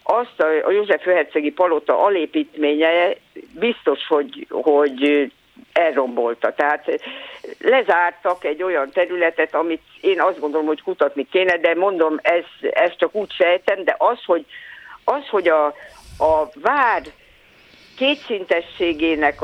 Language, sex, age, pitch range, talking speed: Hungarian, female, 50-69, 155-240 Hz, 120 wpm